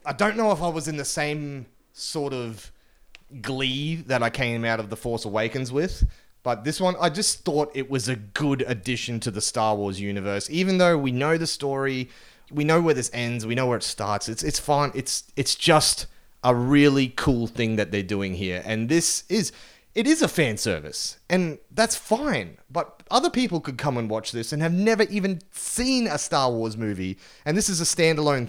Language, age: English, 30-49